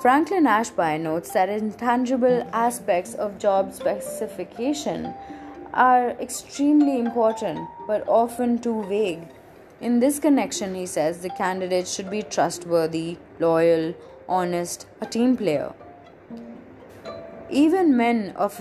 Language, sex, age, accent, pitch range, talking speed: English, female, 20-39, Indian, 180-220 Hz, 110 wpm